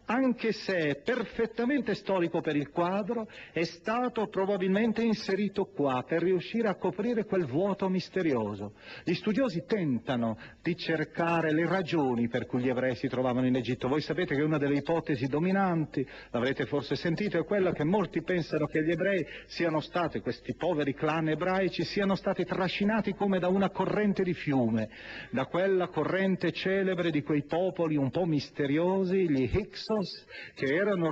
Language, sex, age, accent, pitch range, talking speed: Italian, male, 40-59, native, 135-190 Hz, 155 wpm